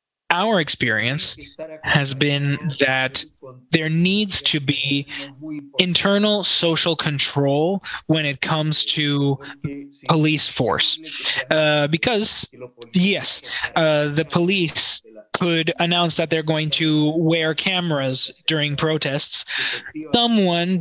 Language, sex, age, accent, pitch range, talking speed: English, male, 20-39, American, 145-180 Hz, 100 wpm